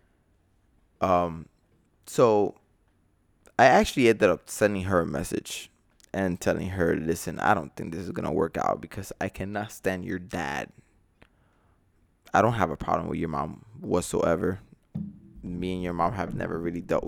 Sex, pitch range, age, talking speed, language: male, 85-105 Hz, 20-39, 160 wpm, English